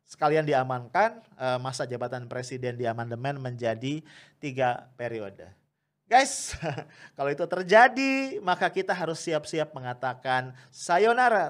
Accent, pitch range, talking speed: Indonesian, 120-155 Hz, 100 wpm